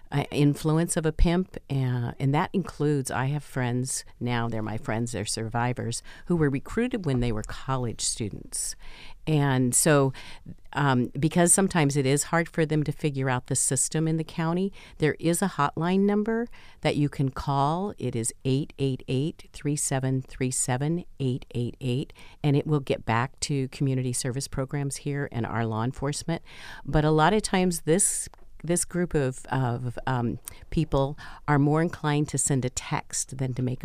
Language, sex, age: English, female, 50-69